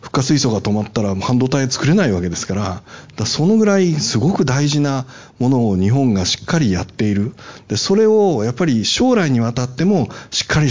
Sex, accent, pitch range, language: male, native, 100-140 Hz, Japanese